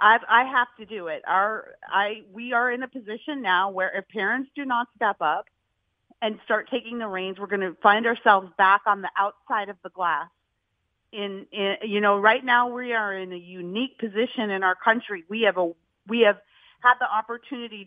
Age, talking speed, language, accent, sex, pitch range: 40-59, 200 wpm, English, American, female, 195-255 Hz